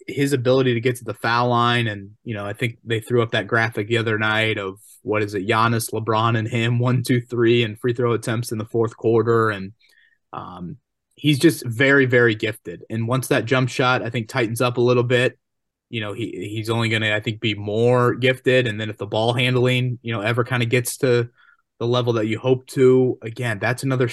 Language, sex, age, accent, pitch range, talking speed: English, male, 20-39, American, 110-125 Hz, 230 wpm